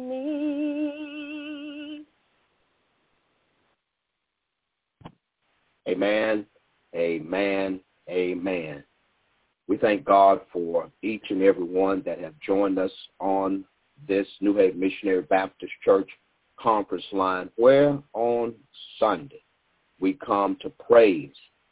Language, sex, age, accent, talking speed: English, male, 50-69, American, 85 wpm